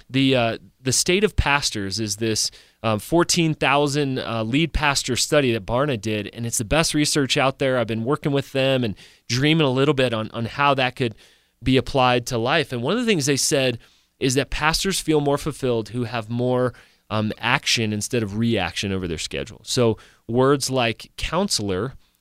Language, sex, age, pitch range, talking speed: English, male, 30-49, 115-145 Hz, 190 wpm